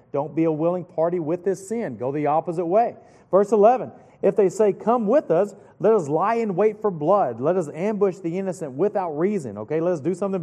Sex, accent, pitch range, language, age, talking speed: male, American, 155-195 Hz, English, 40-59, 225 wpm